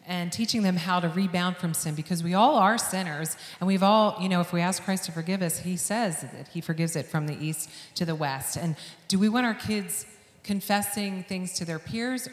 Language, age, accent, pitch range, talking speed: English, 40-59, American, 155-185 Hz, 235 wpm